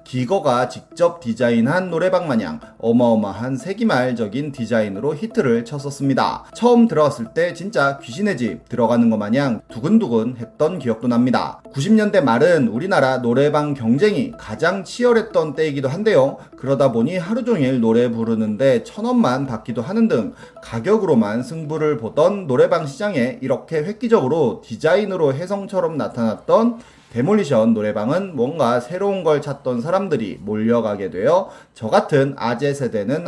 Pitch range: 115-195 Hz